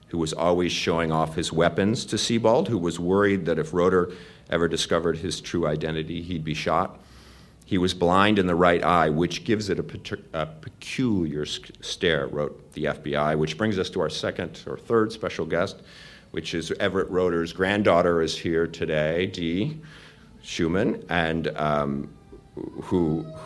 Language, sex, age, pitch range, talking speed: English, male, 50-69, 75-90 Hz, 160 wpm